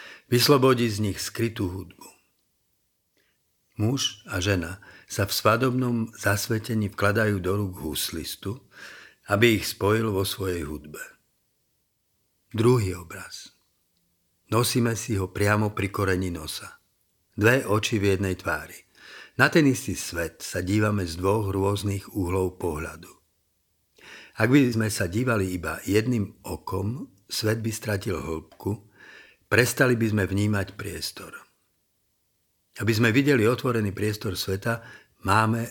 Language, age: Slovak, 50-69